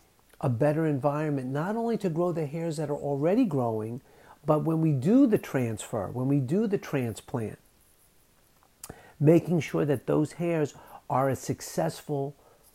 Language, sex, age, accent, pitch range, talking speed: English, male, 50-69, American, 130-160 Hz, 150 wpm